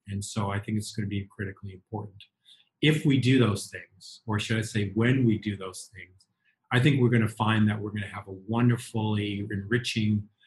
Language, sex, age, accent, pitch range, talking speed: English, male, 30-49, American, 100-110 Hz, 220 wpm